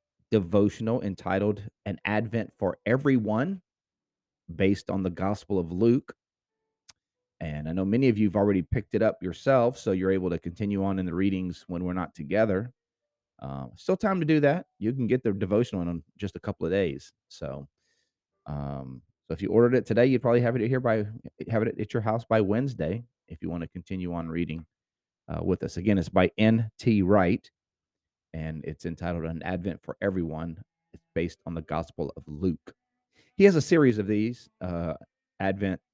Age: 30-49